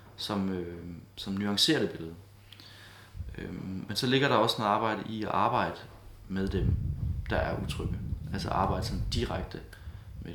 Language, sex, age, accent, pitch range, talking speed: Danish, male, 20-39, native, 90-105 Hz, 155 wpm